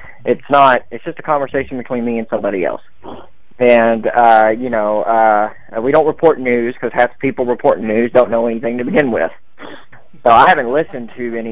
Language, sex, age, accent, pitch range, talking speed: English, male, 20-39, American, 110-135 Hz, 200 wpm